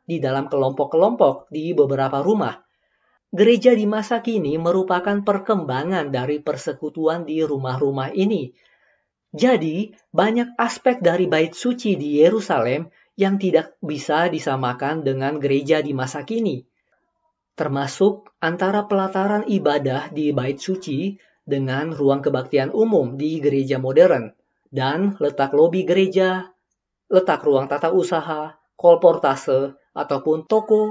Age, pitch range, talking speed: 20-39, 140-200 Hz, 115 wpm